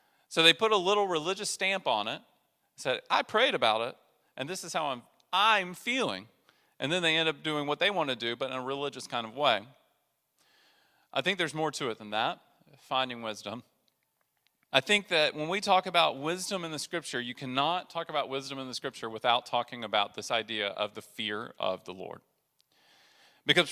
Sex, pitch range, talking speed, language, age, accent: male, 135-180 Hz, 200 wpm, English, 40-59, American